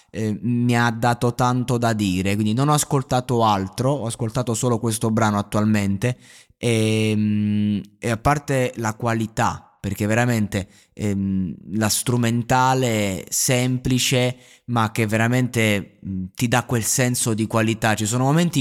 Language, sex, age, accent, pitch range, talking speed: Italian, male, 20-39, native, 100-120 Hz, 135 wpm